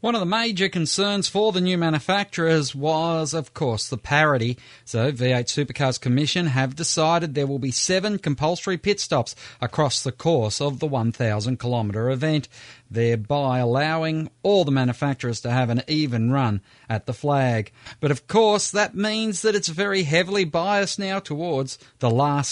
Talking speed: 165 wpm